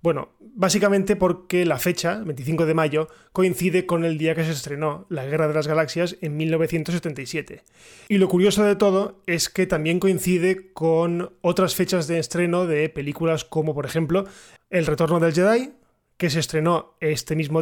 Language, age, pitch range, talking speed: Spanish, 20-39, 155-190 Hz, 170 wpm